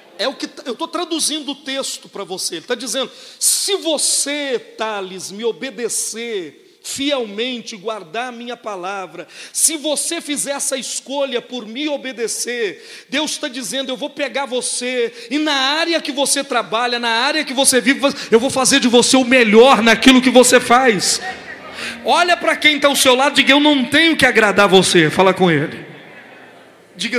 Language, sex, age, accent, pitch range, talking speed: Portuguese, male, 40-59, Brazilian, 235-305 Hz, 175 wpm